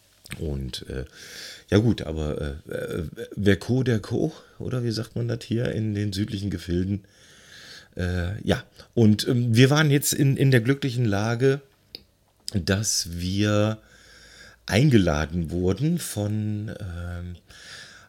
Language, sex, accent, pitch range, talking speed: German, male, German, 85-110 Hz, 125 wpm